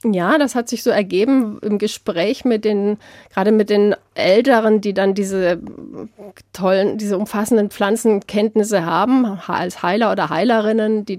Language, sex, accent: German, female, German